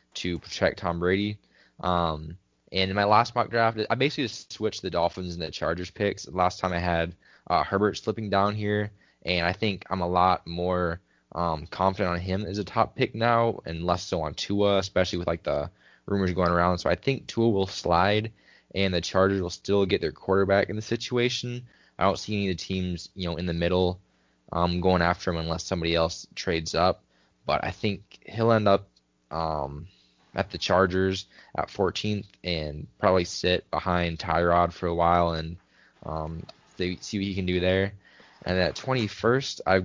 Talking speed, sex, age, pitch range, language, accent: 195 wpm, male, 10-29, 85-100 Hz, English, American